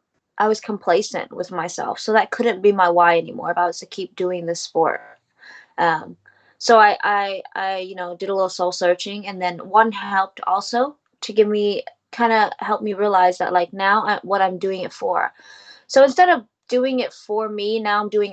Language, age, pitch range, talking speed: English, 20-39, 185-230 Hz, 205 wpm